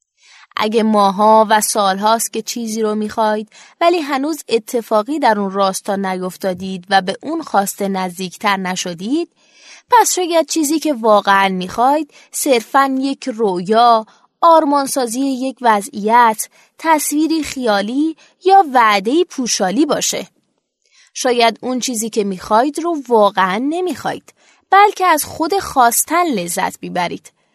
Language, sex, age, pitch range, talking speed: Persian, female, 20-39, 210-285 Hz, 115 wpm